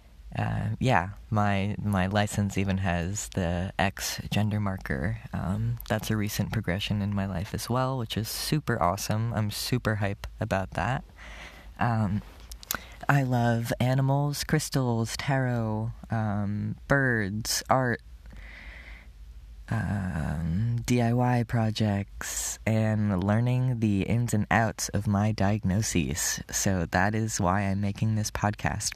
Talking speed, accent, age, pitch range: 120 wpm, American, 20-39, 95-115 Hz